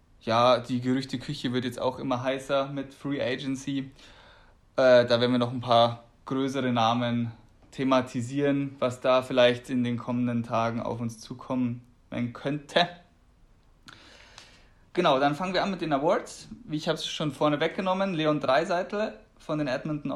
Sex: male